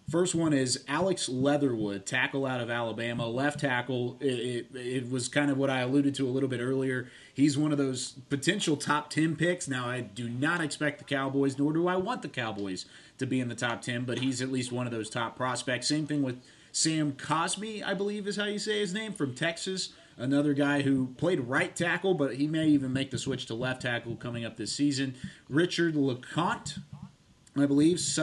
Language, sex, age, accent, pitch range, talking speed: English, male, 30-49, American, 125-160 Hz, 215 wpm